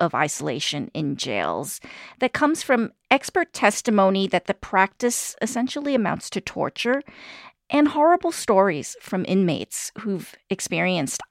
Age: 40-59